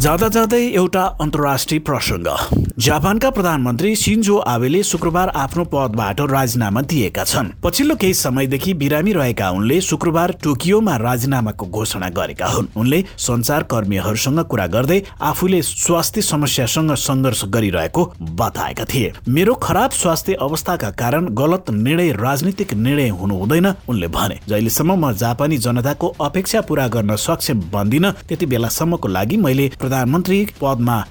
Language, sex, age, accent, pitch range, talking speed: English, male, 50-69, Indian, 110-165 Hz, 100 wpm